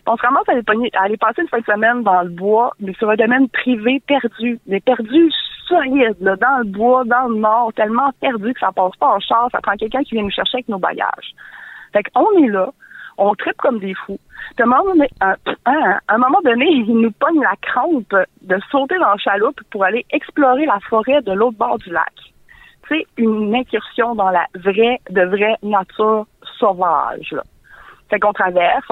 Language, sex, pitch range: French, female, 195-250 Hz